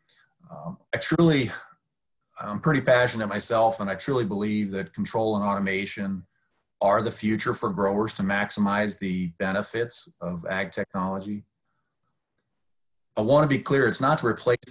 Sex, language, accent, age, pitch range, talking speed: male, English, American, 40-59, 100-125 Hz, 145 wpm